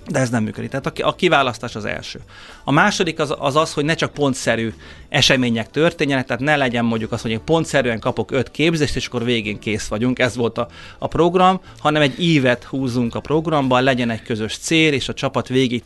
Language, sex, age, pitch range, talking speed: Hungarian, male, 30-49, 115-145 Hz, 210 wpm